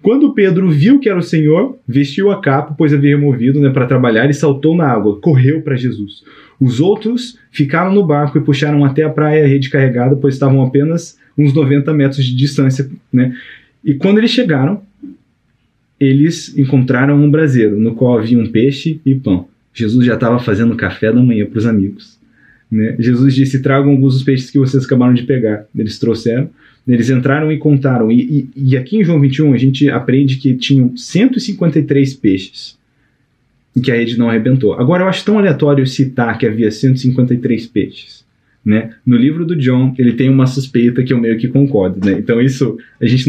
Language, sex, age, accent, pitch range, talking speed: Portuguese, male, 20-39, Brazilian, 120-145 Hz, 190 wpm